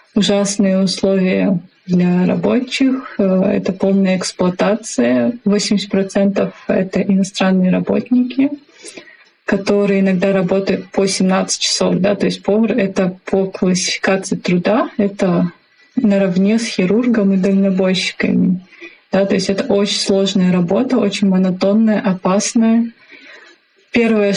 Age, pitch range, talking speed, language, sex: 20-39, 190-220 Hz, 110 wpm, Russian, female